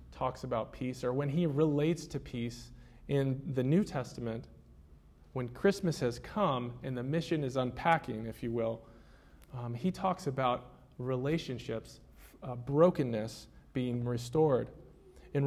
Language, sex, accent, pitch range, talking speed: English, male, American, 120-160 Hz, 135 wpm